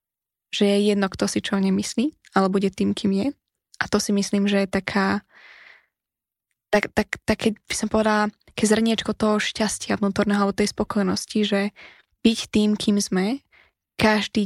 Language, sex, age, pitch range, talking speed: Slovak, female, 10-29, 195-215 Hz, 170 wpm